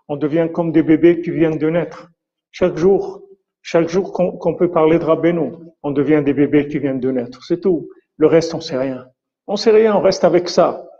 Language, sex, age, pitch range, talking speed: French, male, 50-69, 150-175 Hz, 230 wpm